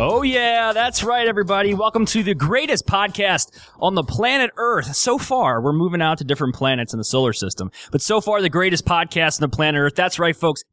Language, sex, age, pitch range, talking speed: English, male, 20-39, 135-190 Hz, 220 wpm